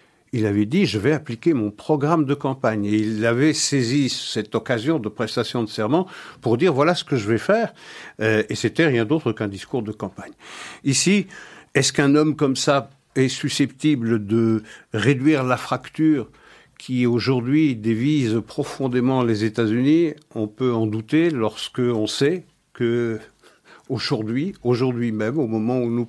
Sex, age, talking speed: male, 60-79, 170 wpm